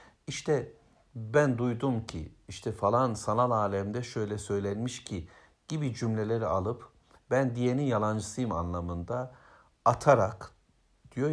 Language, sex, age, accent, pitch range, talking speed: Turkish, male, 60-79, native, 95-125 Hz, 105 wpm